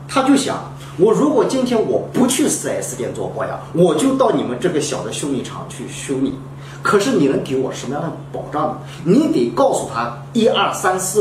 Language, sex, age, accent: Chinese, male, 40-59, native